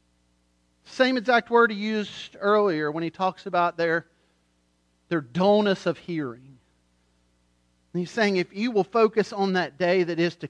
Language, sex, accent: English, male, American